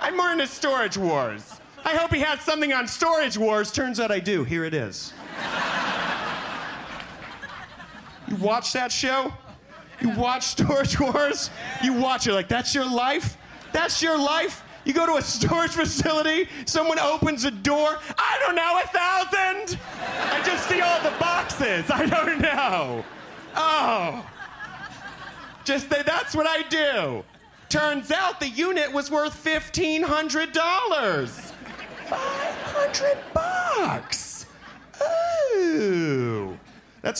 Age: 30-49